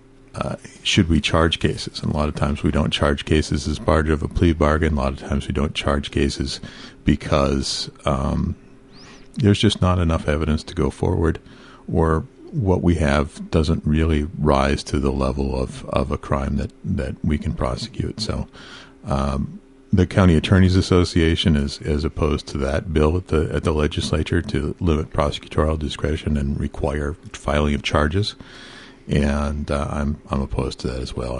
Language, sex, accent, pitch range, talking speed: English, male, American, 70-90 Hz, 175 wpm